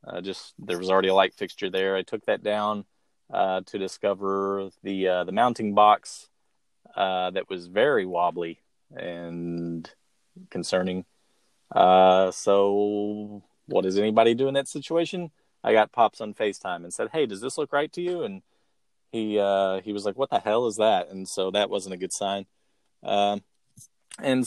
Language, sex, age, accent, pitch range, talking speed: English, male, 30-49, American, 95-115 Hz, 175 wpm